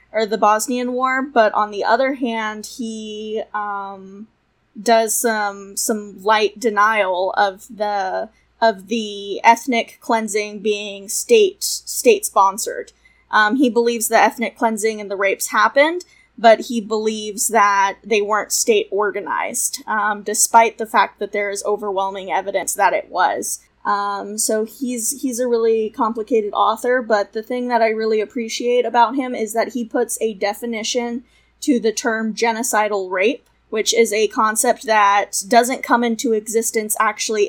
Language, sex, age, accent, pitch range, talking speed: English, female, 10-29, American, 210-240 Hz, 145 wpm